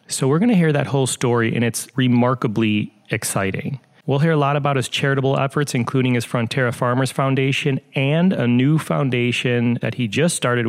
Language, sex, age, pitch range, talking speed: English, male, 30-49, 115-150 Hz, 185 wpm